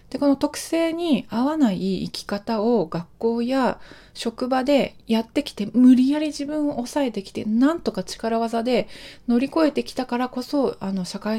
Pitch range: 185-265 Hz